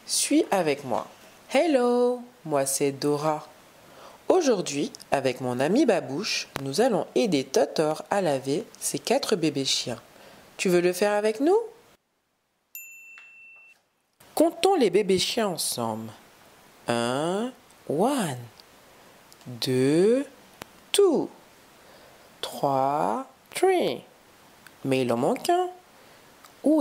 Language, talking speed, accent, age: French, 100 wpm, French, 40-59